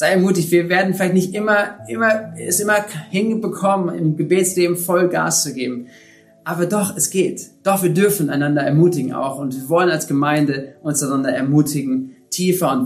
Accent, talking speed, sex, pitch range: German, 175 wpm, male, 145-190 Hz